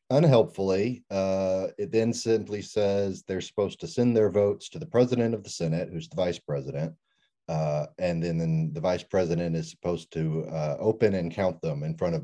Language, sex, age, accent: English, male, 30-49, American